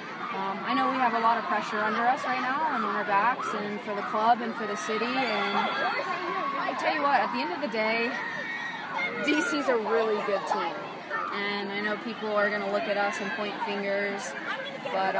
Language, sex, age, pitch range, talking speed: English, female, 20-39, 205-240 Hz, 215 wpm